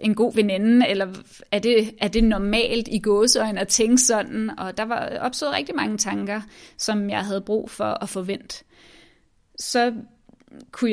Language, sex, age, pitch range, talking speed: Danish, female, 20-39, 205-245 Hz, 165 wpm